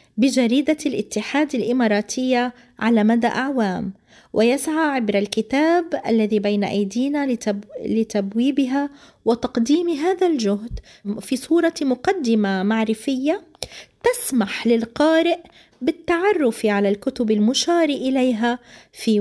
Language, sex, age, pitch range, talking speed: Arabic, female, 20-39, 220-300 Hz, 90 wpm